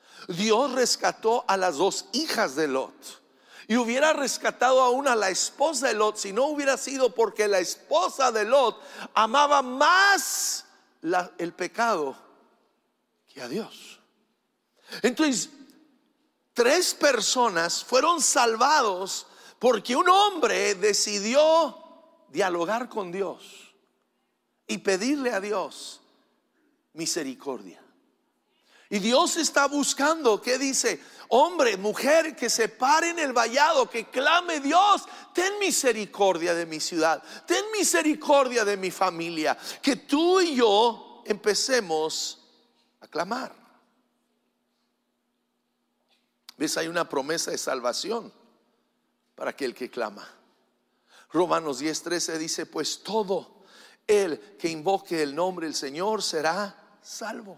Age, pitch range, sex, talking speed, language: 60-79, 205-305 Hz, male, 115 wpm, English